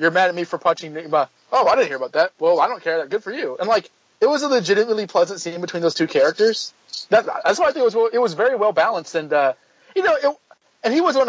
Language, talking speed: English, 280 wpm